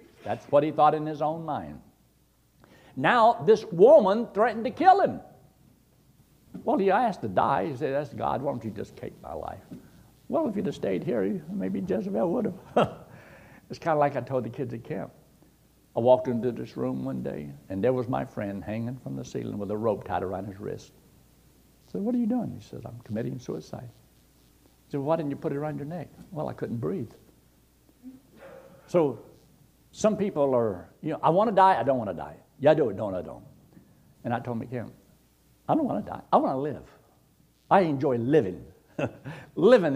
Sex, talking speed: male, 210 wpm